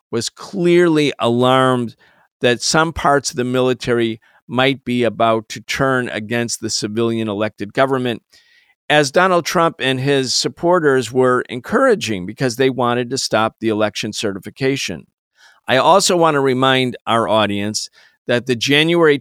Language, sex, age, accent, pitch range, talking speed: English, male, 50-69, American, 125-160 Hz, 140 wpm